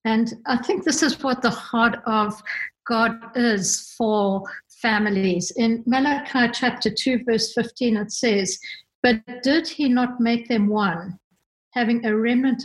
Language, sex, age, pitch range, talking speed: English, female, 60-79, 205-245 Hz, 145 wpm